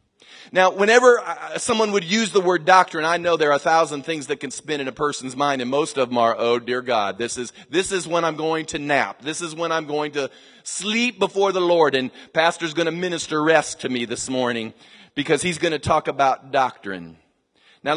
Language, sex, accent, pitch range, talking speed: English, male, American, 165-220 Hz, 225 wpm